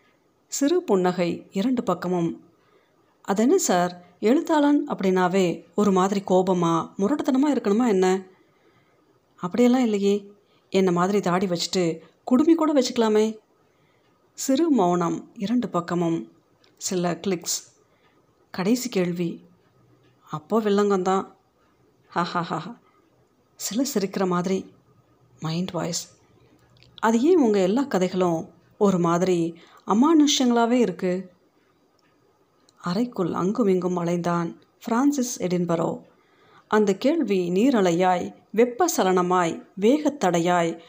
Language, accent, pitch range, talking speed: Tamil, native, 175-240 Hz, 85 wpm